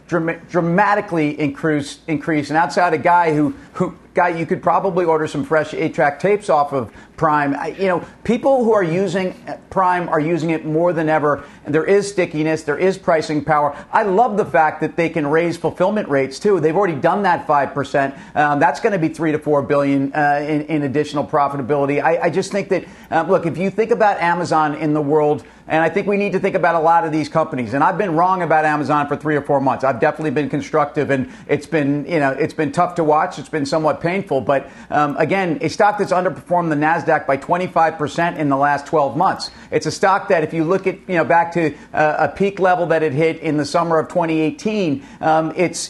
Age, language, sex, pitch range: 40-59, English, male, 150-185 Hz